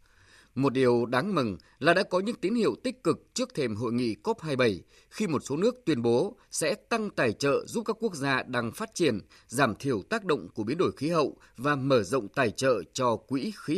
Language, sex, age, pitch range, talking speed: Vietnamese, male, 20-39, 120-180 Hz, 220 wpm